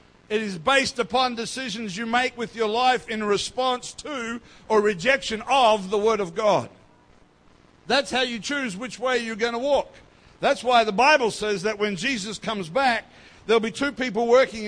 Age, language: 60-79, English